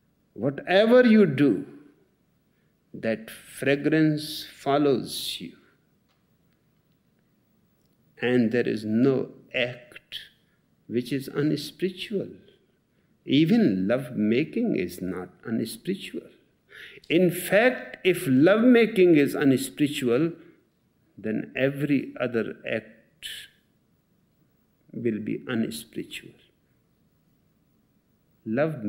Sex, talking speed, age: male, 75 wpm, 60-79